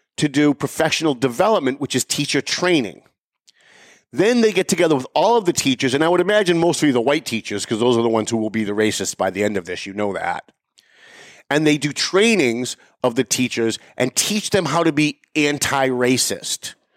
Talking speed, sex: 210 wpm, male